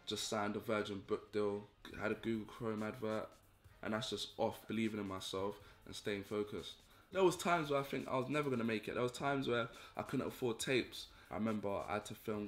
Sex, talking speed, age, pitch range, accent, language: male, 230 wpm, 20-39, 100-110 Hz, British, English